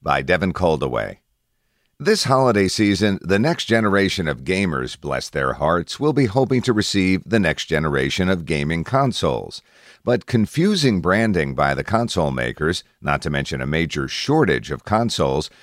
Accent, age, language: American, 50-69, English